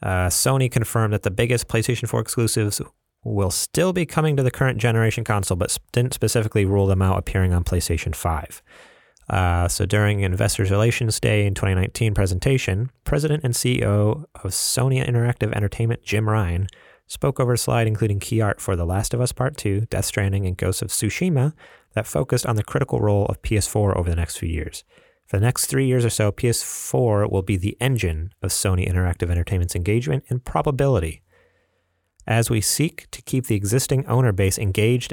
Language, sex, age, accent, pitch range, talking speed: English, male, 30-49, American, 95-120 Hz, 185 wpm